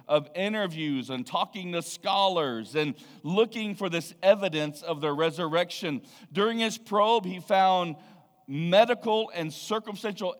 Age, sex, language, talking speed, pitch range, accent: 40-59, male, English, 125 wpm, 155-205 Hz, American